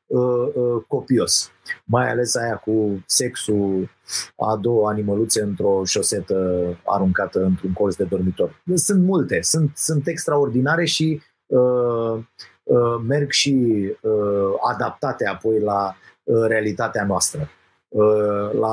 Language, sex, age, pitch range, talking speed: Romanian, male, 30-49, 105-145 Hz, 110 wpm